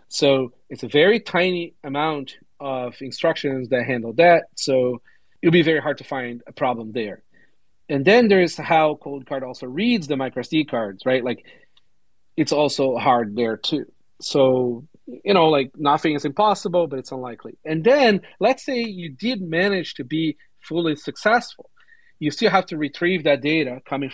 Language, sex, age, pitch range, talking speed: English, male, 40-59, 130-170 Hz, 175 wpm